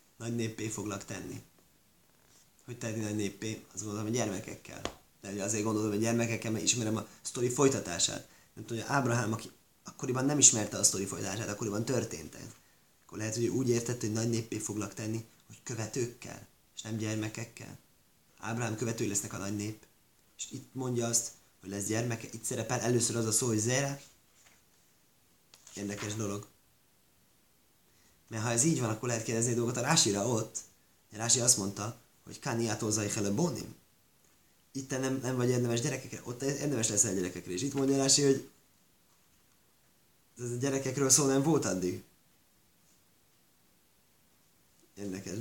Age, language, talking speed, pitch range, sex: 30-49, Hungarian, 150 wpm, 105-125 Hz, male